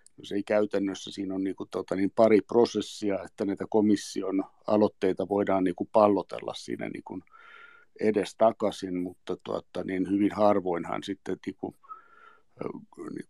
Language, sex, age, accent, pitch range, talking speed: Finnish, male, 60-79, native, 100-120 Hz, 140 wpm